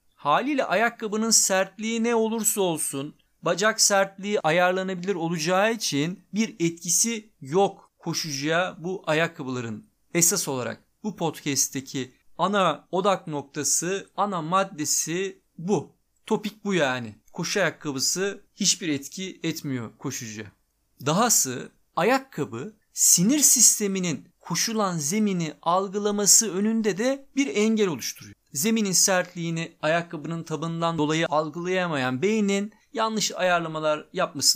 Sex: male